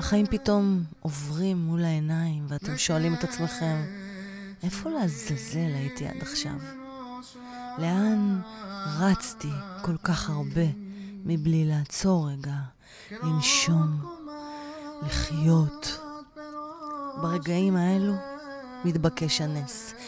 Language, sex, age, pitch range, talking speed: Hebrew, female, 30-49, 160-210 Hz, 85 wpm